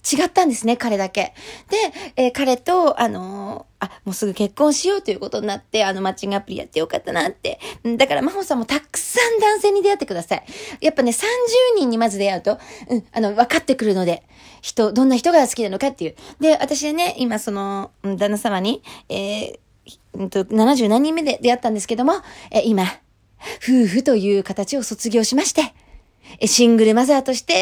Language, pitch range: Japanese, 195-275 Hz